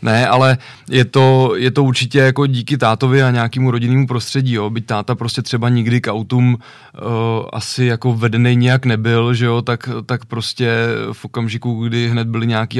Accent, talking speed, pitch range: native, 185 wpm, 110-120 Hz